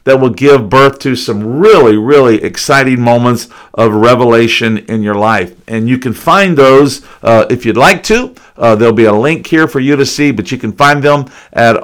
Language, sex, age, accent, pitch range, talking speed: English, male, 50-69, American, 115-155 Hz, 210 wpm